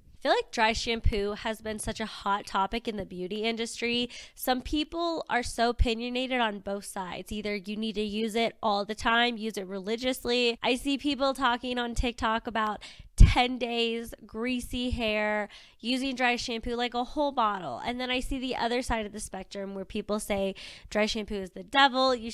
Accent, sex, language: American, female, English